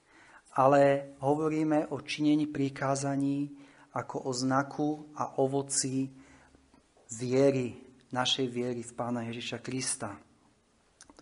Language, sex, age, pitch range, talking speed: Slovak, male, 30-49, 130-175 Hz, 95 wpm